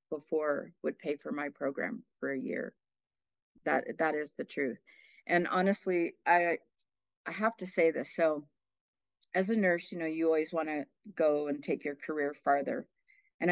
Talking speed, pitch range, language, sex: 175 wpm, 160-190 Hz, English, female